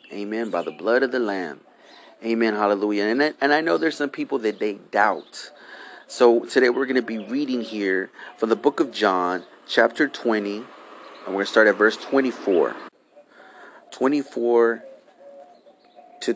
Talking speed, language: 160 wpm, English